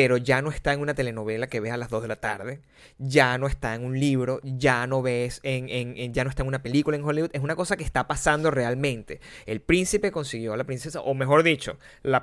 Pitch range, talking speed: 125-160 Hz, 255 wpm